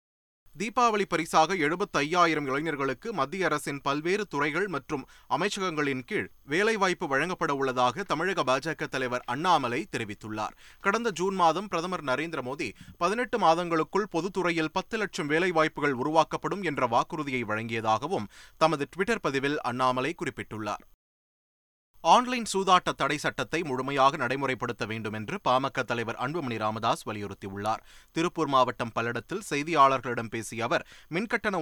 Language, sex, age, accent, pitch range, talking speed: Tamil, male, 30-49, native, 120-165 Hz, 115 wpm